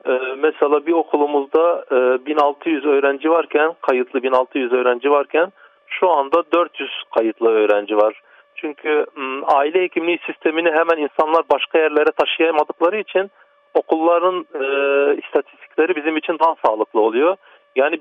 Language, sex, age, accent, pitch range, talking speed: Turkish, male, 40-59, native, 140-185 Hz, 125 wpm